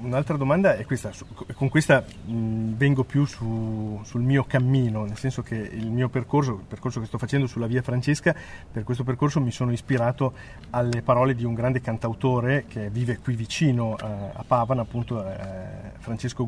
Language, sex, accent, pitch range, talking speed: Italian, male, native, 115-135 Hz, 180 wpm